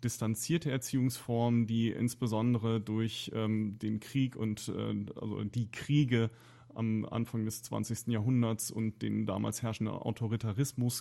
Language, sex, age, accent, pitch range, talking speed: German, male, 30-49, German, 110-125 Hz, 120 wpm